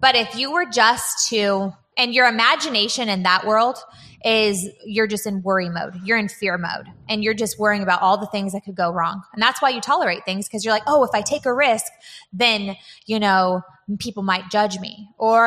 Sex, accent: female, American